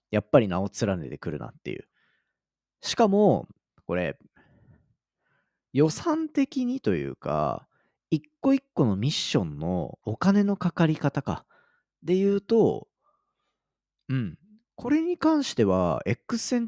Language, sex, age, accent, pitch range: Japanese, male, 40-59, native, 125-205 Hz